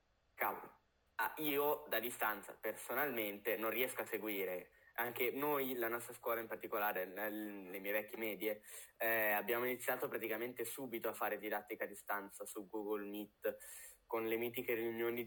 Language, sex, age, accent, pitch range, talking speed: Italian, male, 10-29, native, 105-145 Hz, 150 wpm